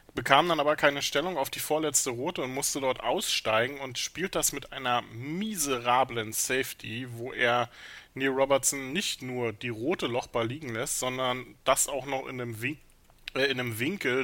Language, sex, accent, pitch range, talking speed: German, male, German, 120-140 Hz, 170 wpm